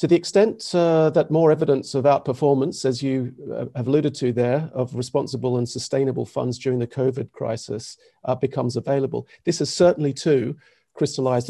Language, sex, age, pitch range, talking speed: English, male, 40-59, 120-145 Hz, 170 wpm